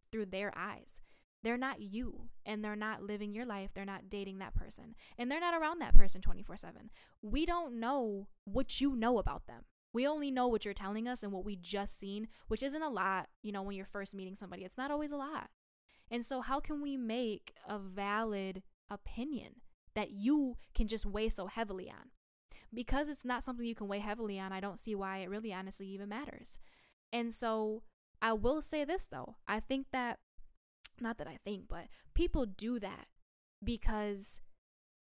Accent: American